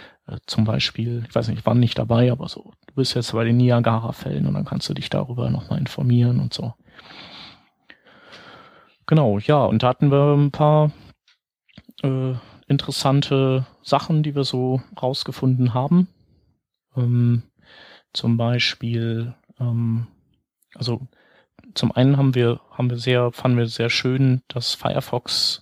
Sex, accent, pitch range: male, German, 115-130 Hz